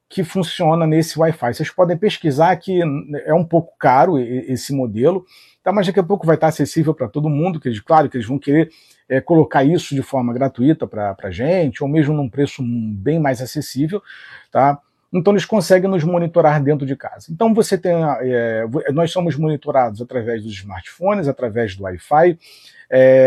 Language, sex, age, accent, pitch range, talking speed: Portuguese, male, 40-59, Brazilian, 125-170 Hz, 185 wpm